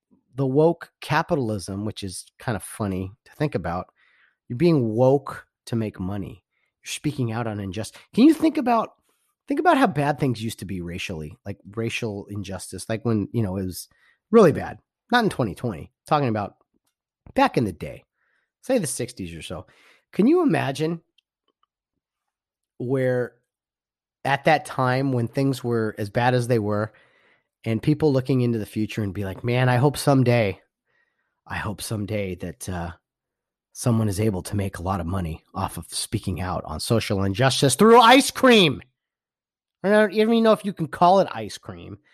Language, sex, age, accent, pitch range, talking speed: English, male, 30-49, American, 100-145 Hz, 175 wpm